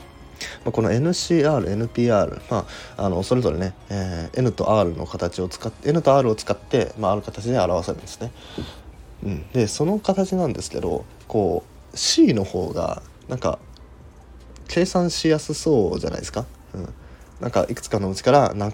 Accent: native